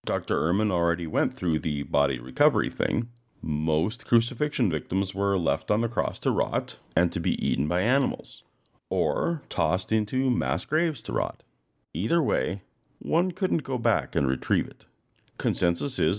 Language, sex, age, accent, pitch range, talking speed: English, male, 40-59, American, 90-130 Hz, 160 wpm